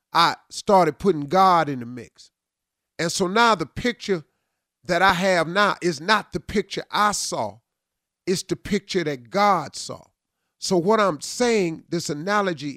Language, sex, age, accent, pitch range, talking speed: English, male, 40-59, American, 155-205 Hz, 160 wpm